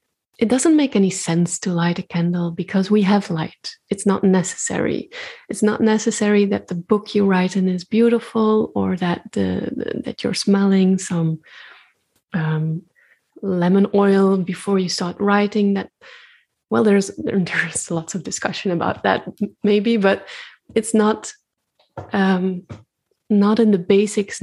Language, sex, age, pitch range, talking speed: English, female, 30-49, 185-215 Hz, 145 wpm